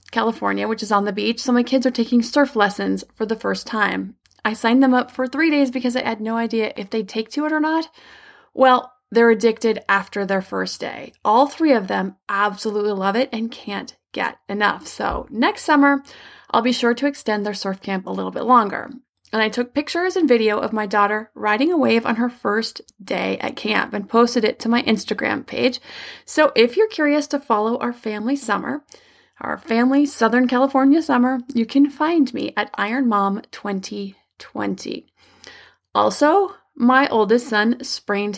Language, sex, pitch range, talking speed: English, female, 215-275 Hz, 190 wpm